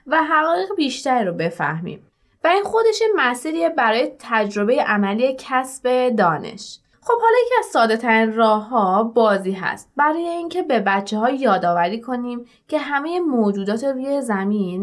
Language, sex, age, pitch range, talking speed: Persian, female, 20-39, 205-285 Hz, 140 wpm